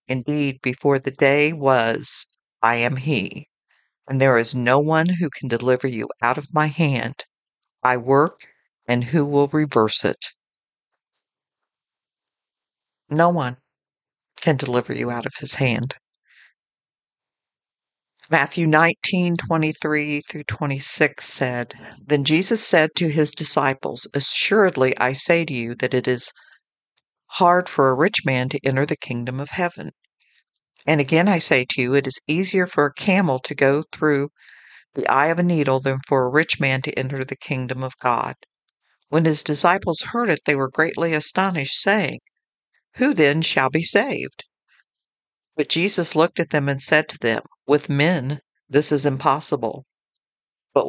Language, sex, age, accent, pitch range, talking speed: English, female, 50-69, American, 130-160 Hz, 150 wpm